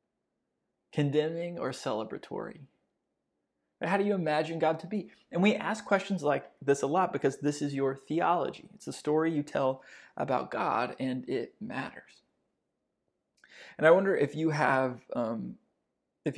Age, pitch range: 20-39, 140-170 Hz